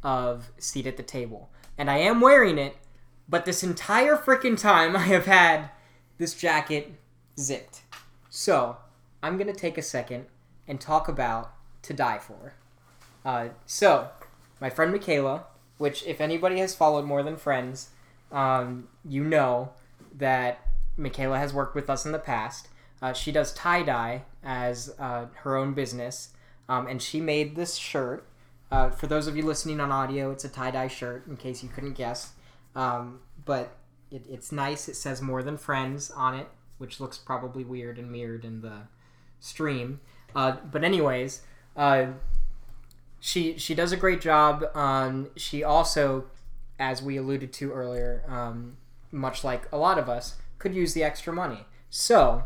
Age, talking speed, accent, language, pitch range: 10-29, 160 wpm, American, English, 125-155 Hz